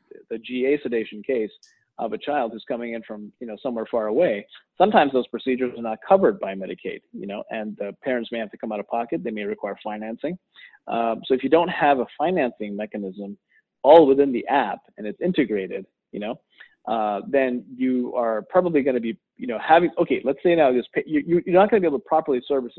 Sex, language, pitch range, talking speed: male, English, 115-145 Hz, 225 wpm